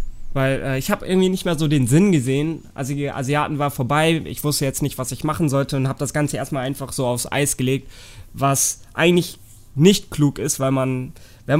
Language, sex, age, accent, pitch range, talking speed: German, male, 20-39, German, 130-160 Hz, 215 wpm